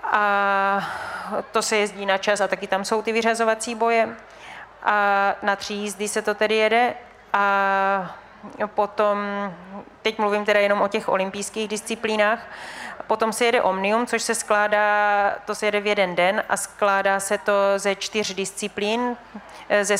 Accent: native